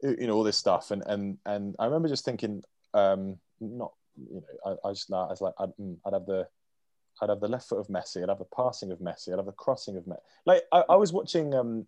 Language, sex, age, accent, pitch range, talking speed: English, male, 20-39, British, 100-130 Hz, 260 wpm